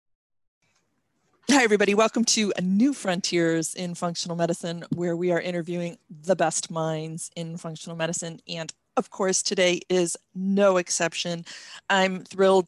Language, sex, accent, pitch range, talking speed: English, female, American, 160-195 Hz, 135 wpm